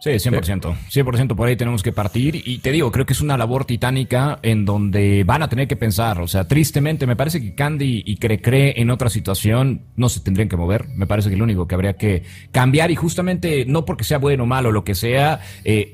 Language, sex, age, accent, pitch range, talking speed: Spanish, male, 30-49, Mexican, 105-140 Hz, 235 wpm